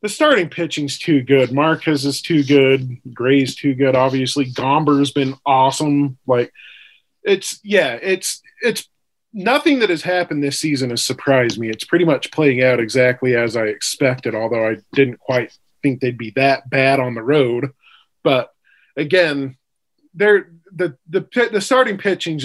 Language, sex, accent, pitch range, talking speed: English, male, American, 125-165 Hz, 155 wpm